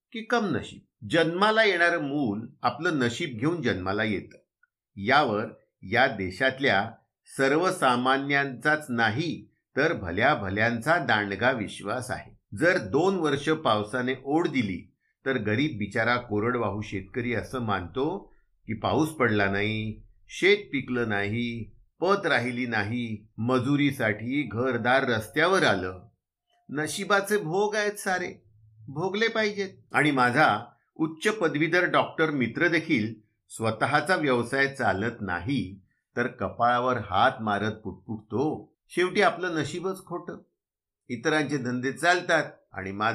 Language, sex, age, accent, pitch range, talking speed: Marathi, male, 50-69, native, 110-170 Hz, 95 wpm